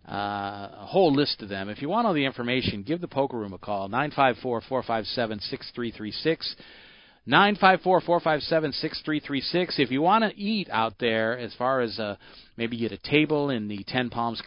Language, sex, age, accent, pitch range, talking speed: English, male, 40-59, American, 105-145 Hz, 160 wpm